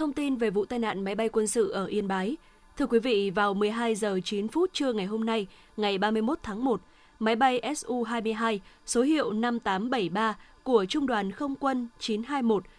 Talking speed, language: 190 wpm, Vietnamese